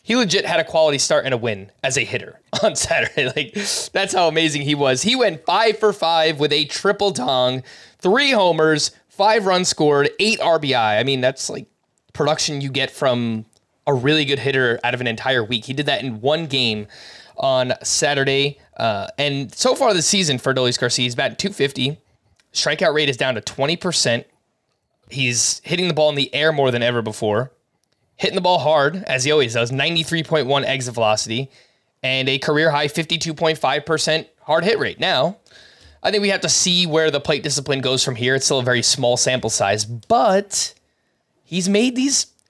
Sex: male